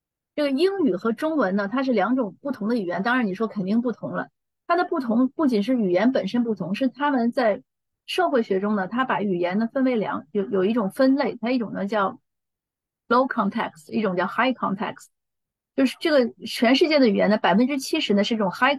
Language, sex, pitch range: Chinese, female, 200-255 Hz